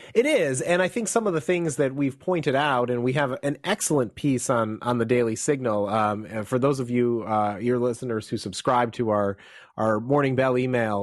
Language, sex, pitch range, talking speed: English, male, 120-145 Hz, 225 wpm